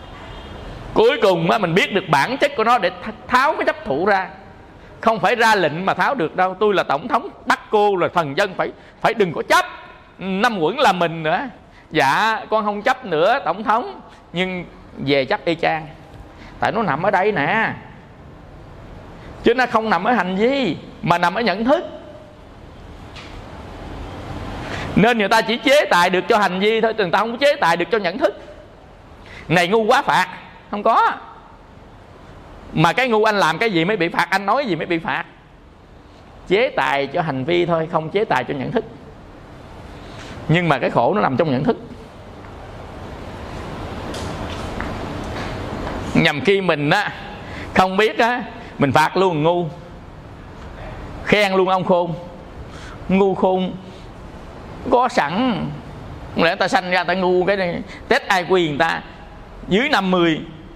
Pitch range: 130-220 Hz